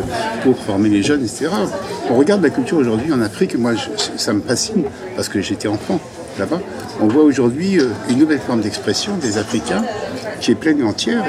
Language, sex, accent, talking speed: French, male, French, 190 wpm